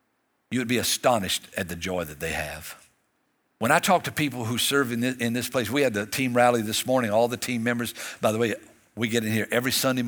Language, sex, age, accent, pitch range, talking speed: English, male, 60-79, American, 105-130 Hz, 245 wpm